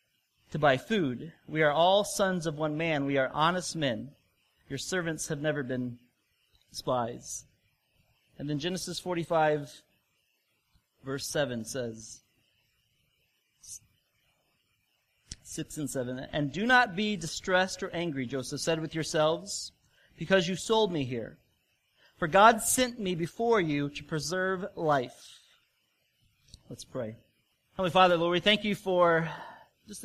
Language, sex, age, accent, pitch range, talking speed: English, male, 40-59, American, 135-185 Hz, 130 wpm